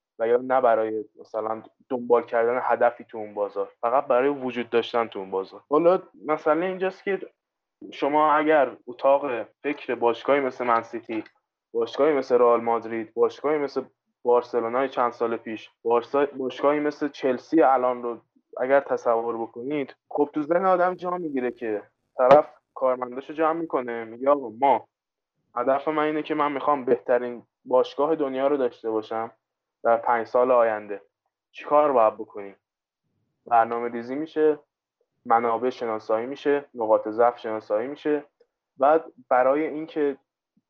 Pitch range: 120-150 Hz